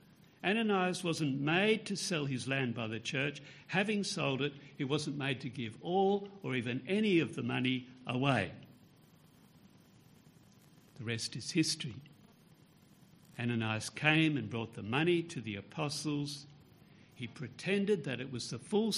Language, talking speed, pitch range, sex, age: English, 145 wpm, 115-165 Hz, male, 60-79